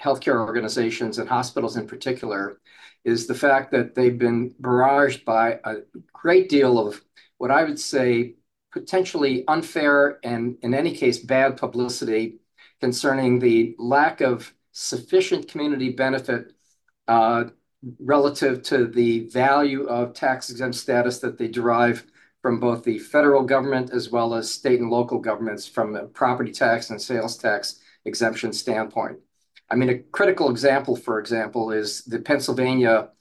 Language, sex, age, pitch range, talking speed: English, male, 50-69, 120-135 Hz, 145 wpm